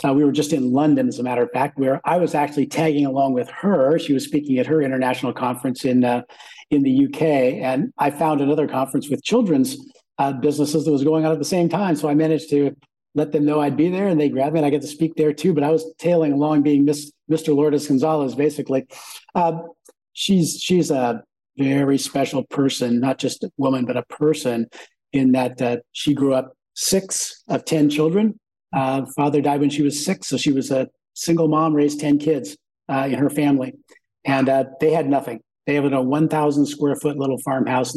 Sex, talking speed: male, 215 wpm